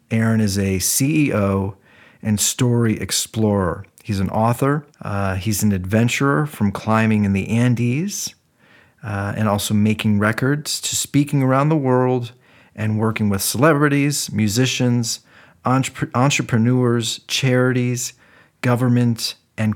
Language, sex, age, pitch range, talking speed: English, male, 40-59, 100-120 Hz, 115 wpm